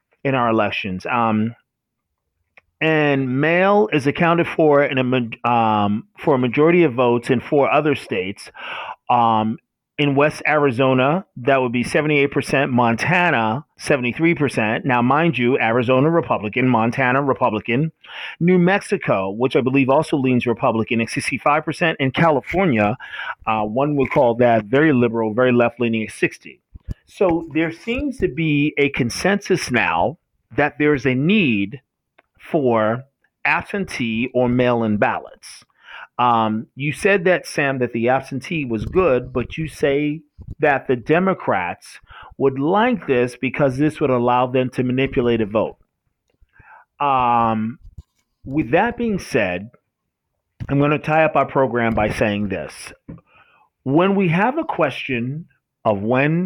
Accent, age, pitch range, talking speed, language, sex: American, 40-59, 120-155 Hz, 140 wpm, English, male